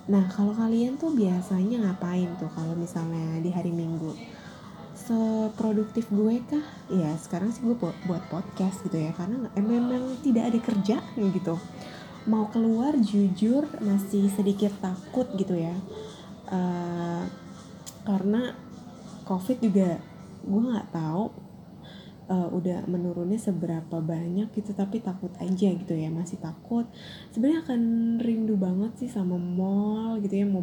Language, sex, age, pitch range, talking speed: Indonesian, female, 10-29, 180-215 Hz, 135 wpm